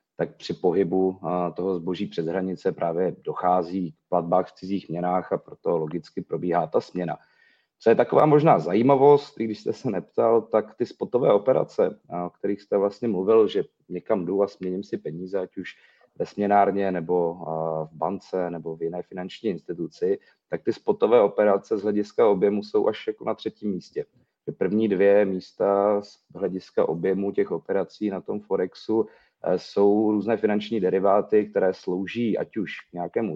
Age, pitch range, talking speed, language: 30-49, 90-105 Hz, 165 wpm, Czech